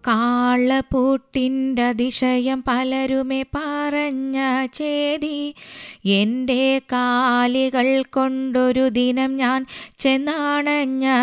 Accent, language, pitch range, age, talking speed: native, Malayalam, 255-290 Hz, 20-39, 60 wpm